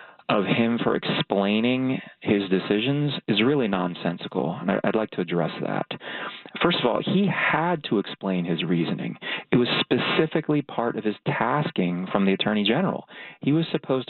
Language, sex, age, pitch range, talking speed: English, male, 30-49, 95-115 Hz, 160 wpm